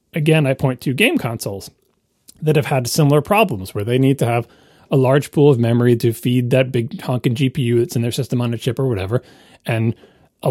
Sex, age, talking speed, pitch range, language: male, 30-49, 215 wpm, 120-155 Hz, English